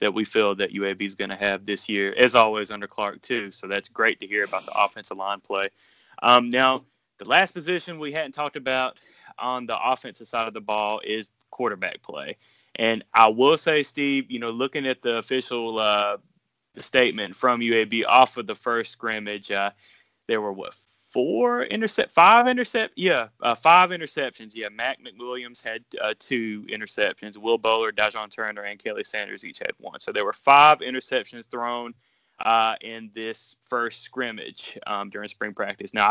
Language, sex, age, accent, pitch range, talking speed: English, male, 20-39, American, 110-145 Hz, 190 wpm